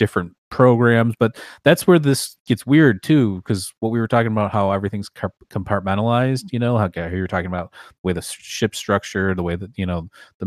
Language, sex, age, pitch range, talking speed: English, male, 30-49, 90-105 Hz, 200 wpm